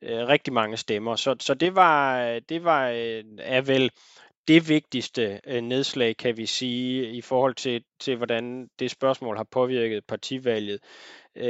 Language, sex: Danish, male